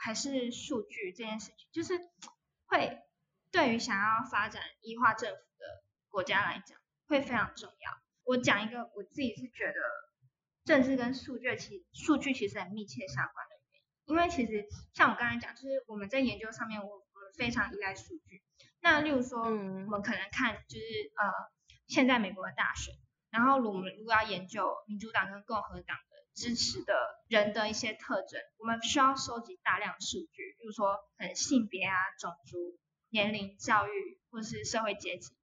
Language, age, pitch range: Chinese, 20-39, 205-270 Hz